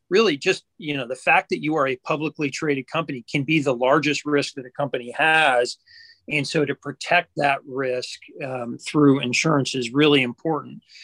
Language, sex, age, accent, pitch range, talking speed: English, male, 40-59, American, 130-155 Hz, 185 wpm